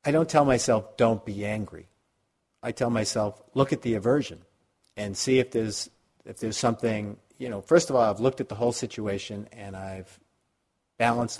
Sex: male